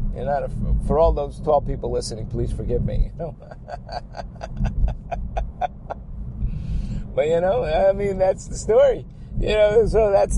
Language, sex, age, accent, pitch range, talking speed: English, male, 50-69, American, 130-180 Hz, 150 wpm